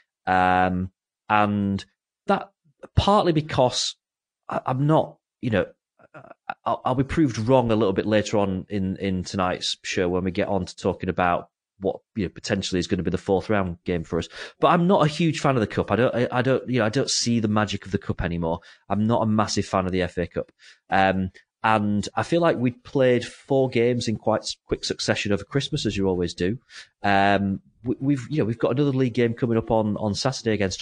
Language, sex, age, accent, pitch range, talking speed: English, male, 30-49, British, 100-125 Hz, 225 wpm